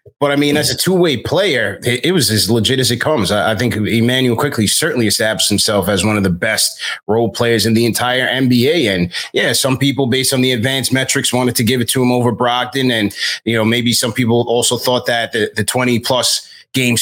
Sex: male